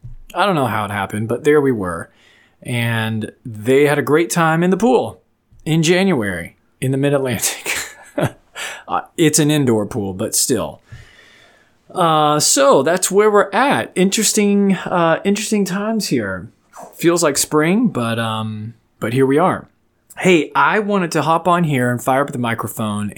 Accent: American